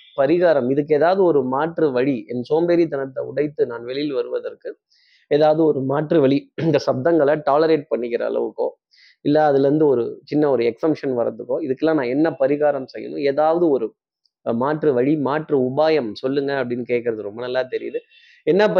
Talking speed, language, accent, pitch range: 140 wpm, Tamil, native, 135-180 Hz